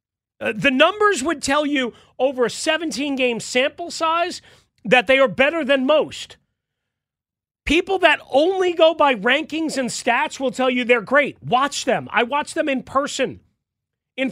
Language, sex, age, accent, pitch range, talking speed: English, male, 40-59, American, 230-295 Hz, 160 wpm